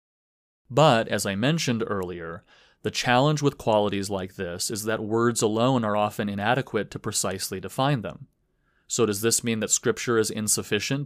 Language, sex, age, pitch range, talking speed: English, male, 30-49, 105-125 Hz, 165 wpm